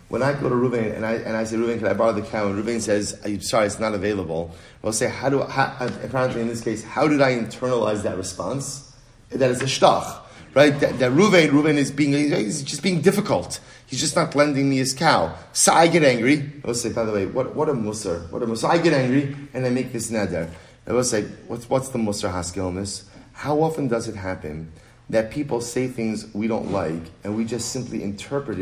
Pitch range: 100-130 Hz